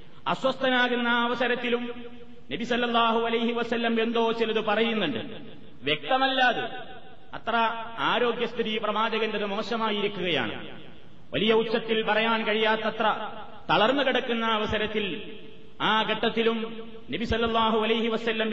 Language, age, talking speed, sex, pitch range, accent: Malayalam, 30-49, 75 wpm, male, 215-235 Hz, native